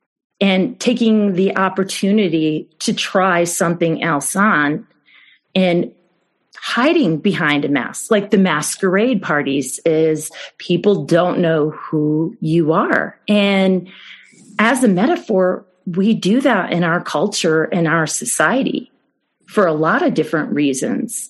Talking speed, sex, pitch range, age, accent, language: 125 wpm, female, 175-220 Hz, 40-59, American, English